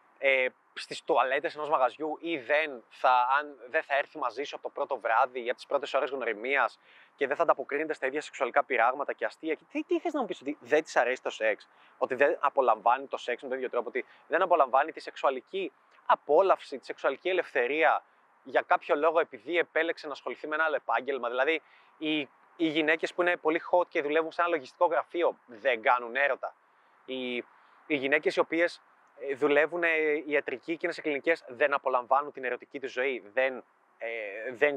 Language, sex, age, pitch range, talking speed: Greek, male, 20-39, 145-195 Hz, 195 wpm